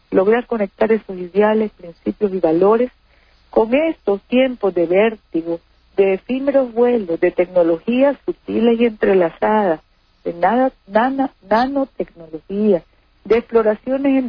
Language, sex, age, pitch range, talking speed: Spanish, female, 50-69, 180-245 Hz, 105 wpm